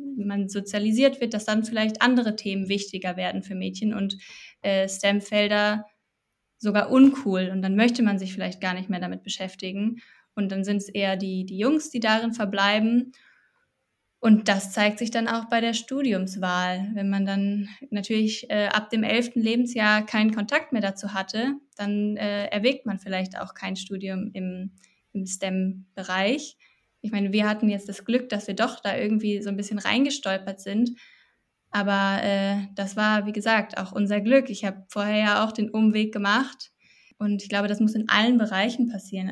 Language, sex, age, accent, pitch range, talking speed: German, female, 20-39, German, 200-230 Hz, 175 wpm